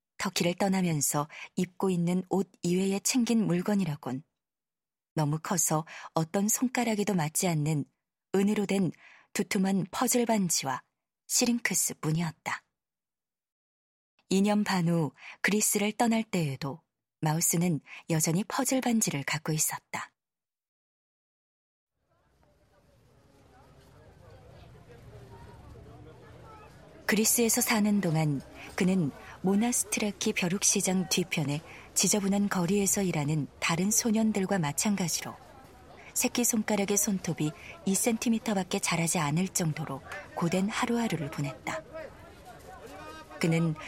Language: Korean